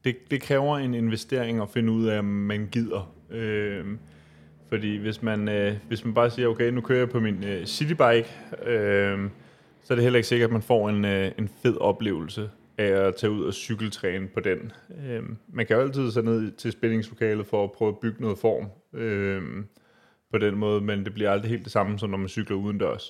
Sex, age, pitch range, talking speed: male, 20-39, 100-115 Hz, 220 wpm